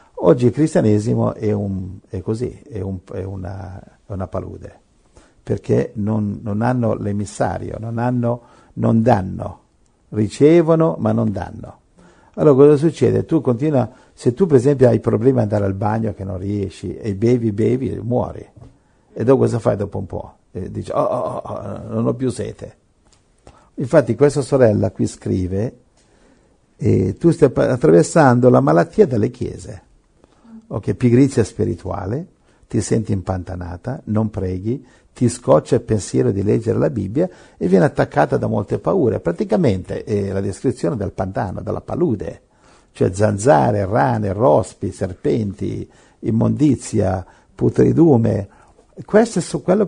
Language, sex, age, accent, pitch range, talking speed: Italian, male, 60-79, native, 100-135 Hz, 145 wpm